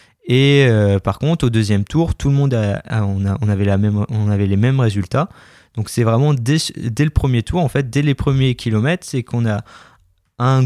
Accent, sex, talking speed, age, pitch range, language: French, male, 185 wpm, 20-39, 105-130 Hz, French